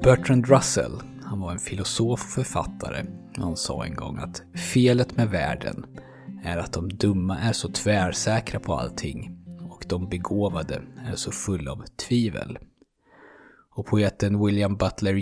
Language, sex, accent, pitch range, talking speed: Swedish, male, native, 90-115 Hz, 145 wpm